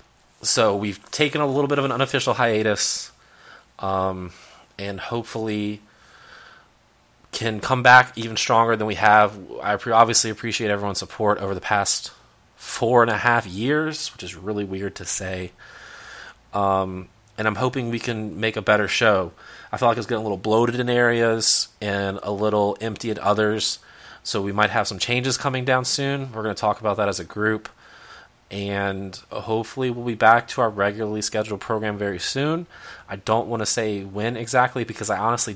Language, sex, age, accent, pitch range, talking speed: English, male, 30-49, American, 100-115 Hz, 180 wpm